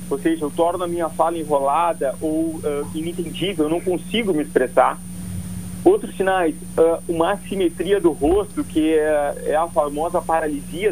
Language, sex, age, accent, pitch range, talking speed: Portuguese, male, 40-59, Brazilian, 150-180 Hz, 150 wpm